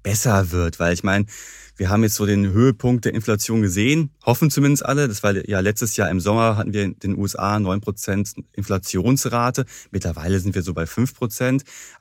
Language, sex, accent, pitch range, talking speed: German, male, German, 100-120 Hz, 185 wpm